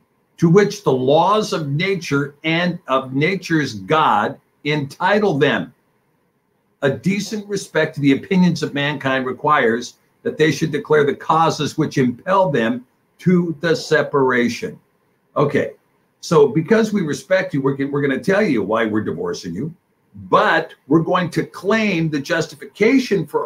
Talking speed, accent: 145 wpm, American